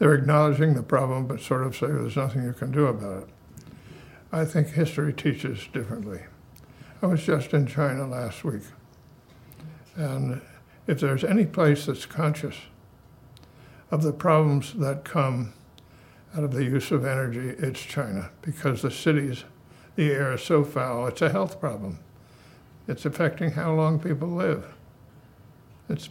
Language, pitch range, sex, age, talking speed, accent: English, 130-155 Hz, male, 60-79, 150 wpm, American